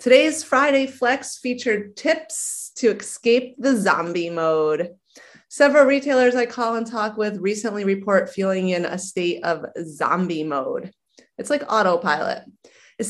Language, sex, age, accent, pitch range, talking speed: English, female, 30-49, American, 185-245 Hz, 135 wpm